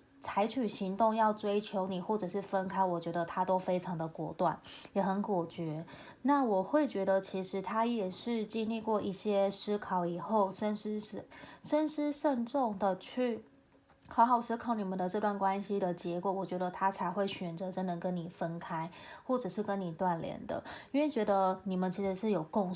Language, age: Chinese, 20-39